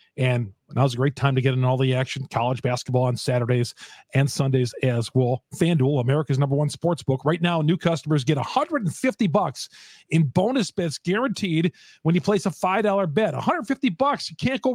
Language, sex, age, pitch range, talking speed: English, male, 40-59, 145-195 Hz, 190 wpm